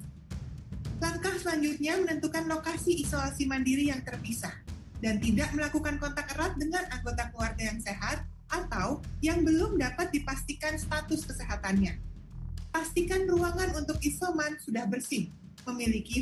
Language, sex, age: Indonesian, female, 30-49